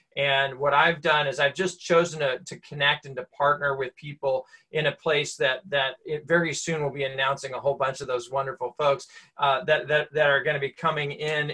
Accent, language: American, English